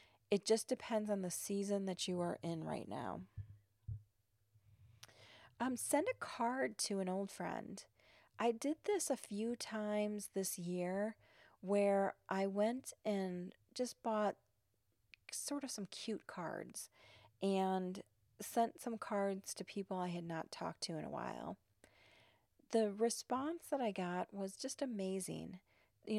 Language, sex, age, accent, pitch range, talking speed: English, female, 30-49, American, 160-215 Hz, 140 wpm